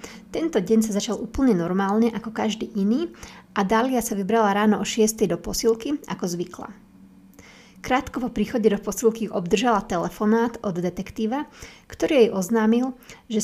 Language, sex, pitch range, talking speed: Slovak, female, 200-230 Hz, 145 wpm